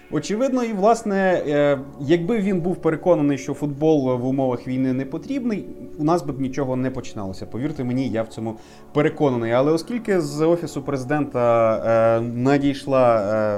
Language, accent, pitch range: Ukrainian, native, 115-150 Hz